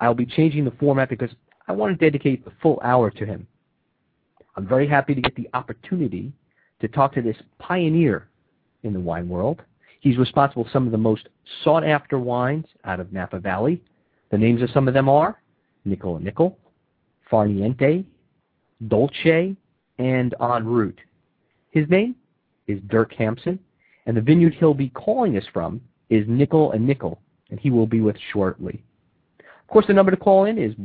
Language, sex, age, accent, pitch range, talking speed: English, male, 40-59, American, 105-145 Hz, 175 wpm